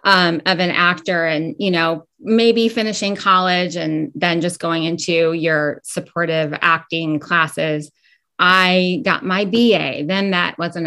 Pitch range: 165-200 Hz